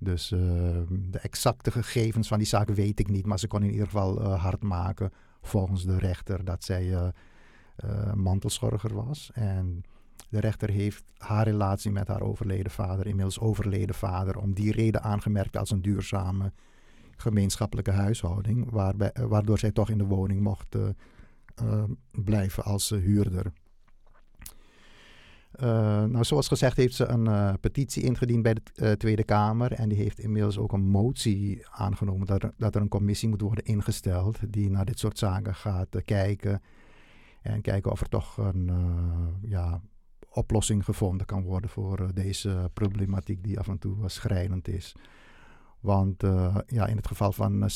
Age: 50-69